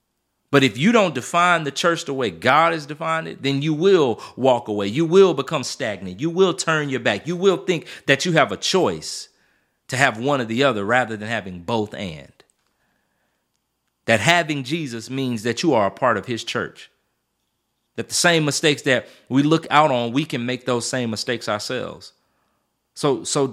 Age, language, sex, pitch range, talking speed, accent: 30-49, English, male, 120-160 Hz, 195 wpm, American